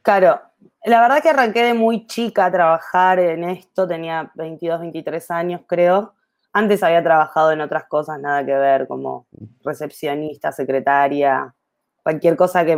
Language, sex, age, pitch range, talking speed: Spanish, female, 20-39, 165-195 Hz, 150 wpm